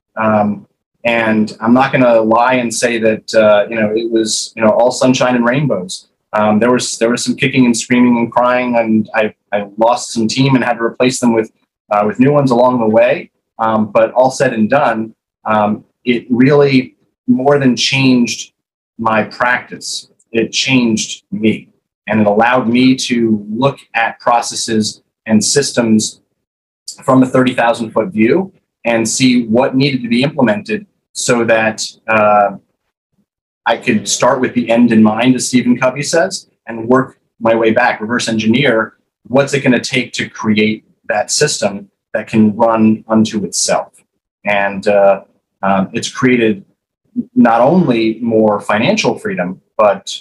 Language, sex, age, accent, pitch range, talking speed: English, male, 30-49, American, 110-125 Hz, 165 wpm